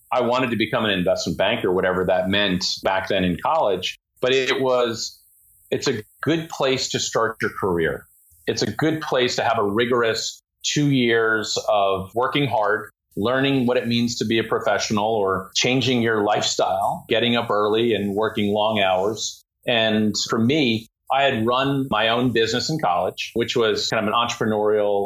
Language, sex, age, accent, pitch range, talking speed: English, male, 40-59, American, 105-125 Hz, 175 wpm